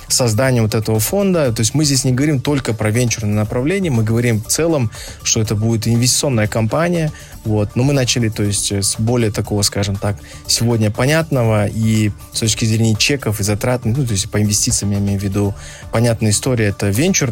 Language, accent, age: Russian, native, 20-39